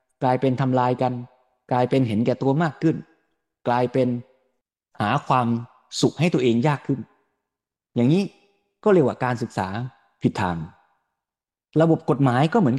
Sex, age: male, 20-39